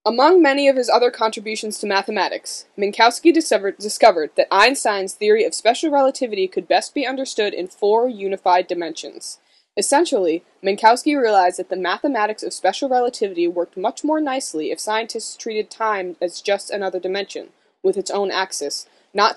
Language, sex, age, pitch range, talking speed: English, female, 20-39, 190-275 Hz, 155 wpm